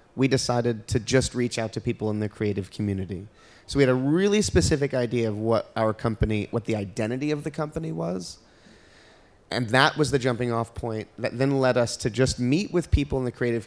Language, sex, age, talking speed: English, male, 30-49, 215 wpm